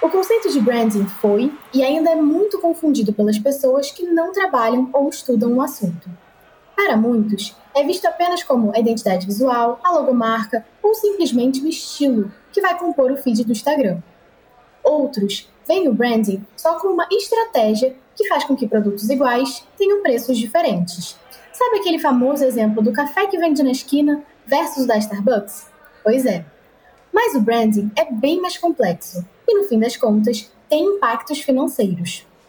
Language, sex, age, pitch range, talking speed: Portuguese, female, 10-29, 220-330 Hz, 165 wpm